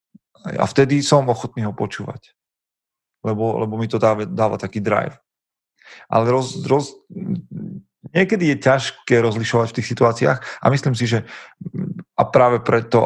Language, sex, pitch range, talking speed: Slovak, male, 100-120 Hz, 140 wpm